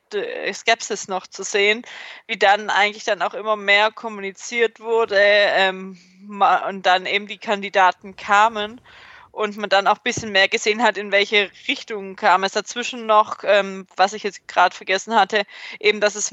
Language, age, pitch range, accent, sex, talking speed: German, 20-39, 190-215 Hz, German, female, 170 wpm